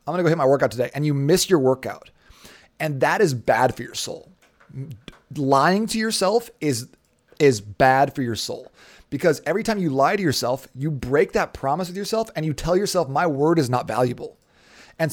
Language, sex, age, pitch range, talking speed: English, male, 30-49, 130-165 Hz, 205 wpm